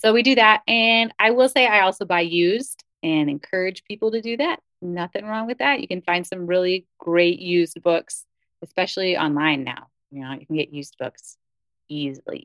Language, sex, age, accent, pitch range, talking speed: English, female, 30-49, American, 175-245 Hz, 200 wpm